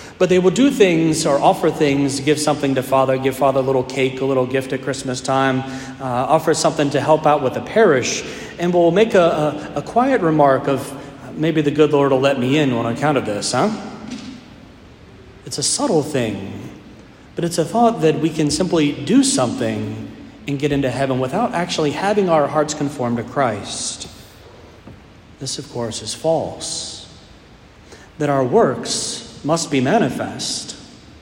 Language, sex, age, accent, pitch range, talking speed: English, male, 40-59, American, 125-165 Hz, 175 wpm